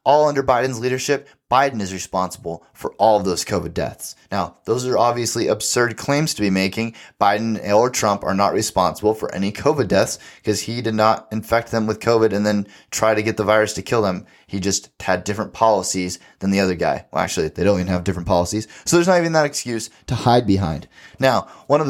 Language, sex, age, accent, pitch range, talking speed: English, male, 20-39, American, 100-120 Hz, 215 wpm